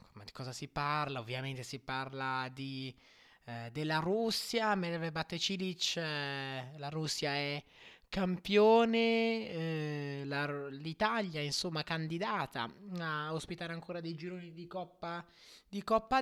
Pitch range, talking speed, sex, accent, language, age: 135-180 Hz, 120 wpm, male, native, Italian, 20-39